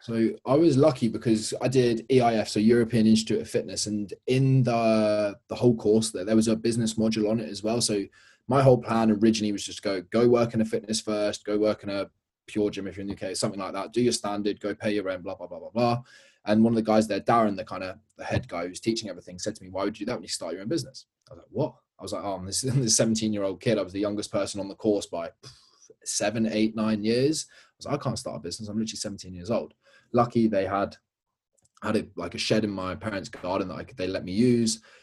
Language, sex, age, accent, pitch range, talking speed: English, male, 20-39, British, 105-115 Hz, 270 wpm